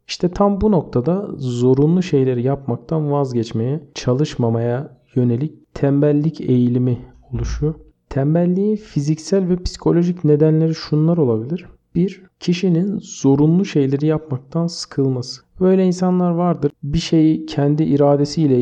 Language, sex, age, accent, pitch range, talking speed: Turkish, male, 50-69, native, 135-165 Hz, 105 wpm